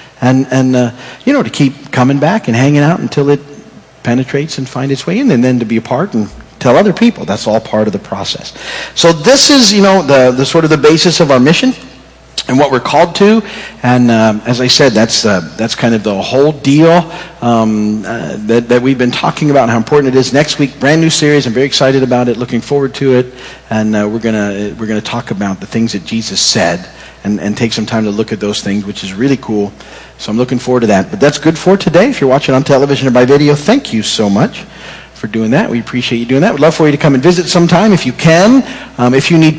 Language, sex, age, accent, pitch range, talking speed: English, male, 50-69, American, 115-160 Hz, 255 wpm